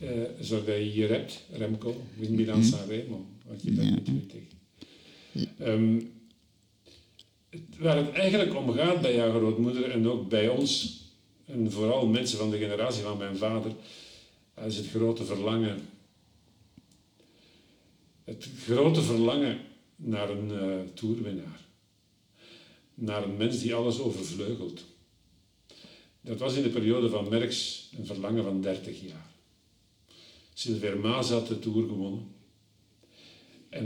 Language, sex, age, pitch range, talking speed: Dutch, male, 50-69, 100-115 Hz, 130 wpm